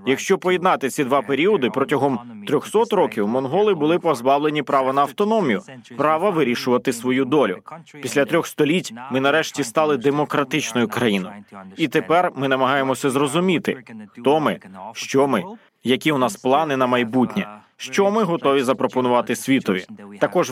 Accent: native